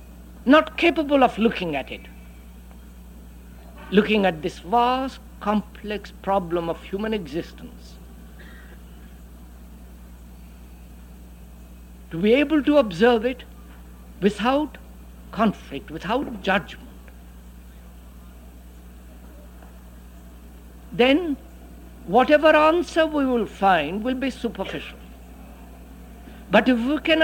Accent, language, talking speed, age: Indian, English, 85 wpm, 60-79